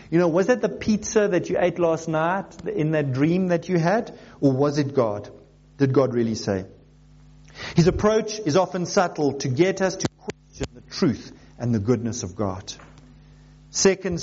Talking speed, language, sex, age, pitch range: 180 wpm, English, male, 50-69, 125-185 Hz